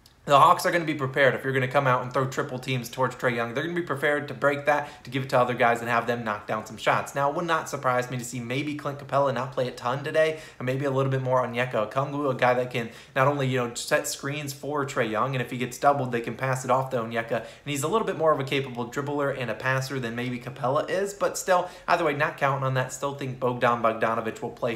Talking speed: 295 wpm